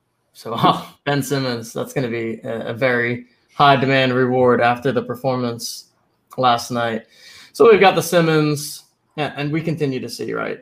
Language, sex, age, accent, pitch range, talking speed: English, male, 20-39, American, 120-145 Hz, 175 wpm